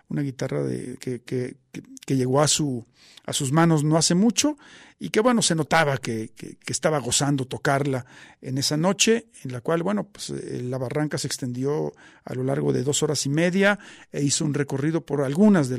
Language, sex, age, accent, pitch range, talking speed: Spanish, male, 50-69, Mexican, 135-165 Hz, 200 wpm